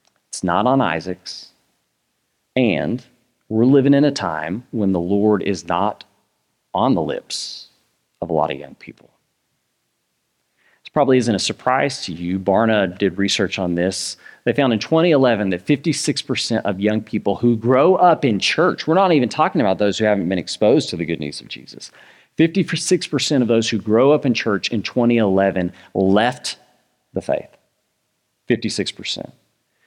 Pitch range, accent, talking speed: 100-135 Hz, American, 160 wpm